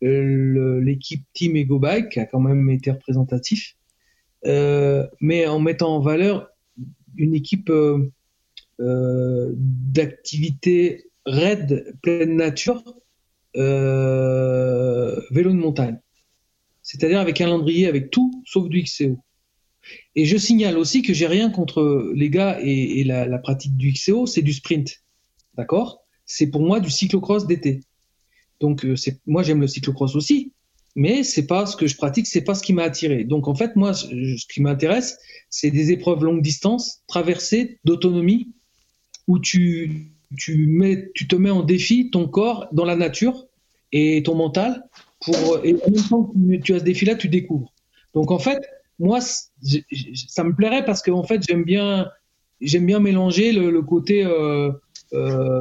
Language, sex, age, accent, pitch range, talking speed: French, male, 40-59, French, 140-190 Hz, 160 wpm